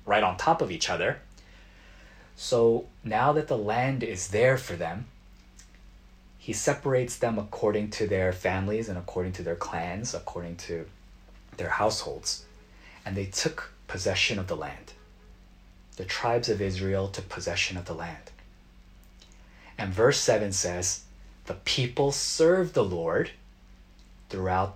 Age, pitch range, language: 30-49, 90-110 Hz, Korean